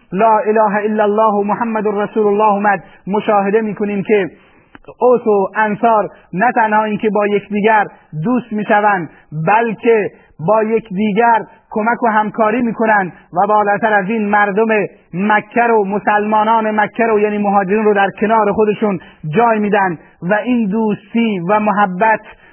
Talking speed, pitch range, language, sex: 145 wpm, 200-225 Hz, Persian, male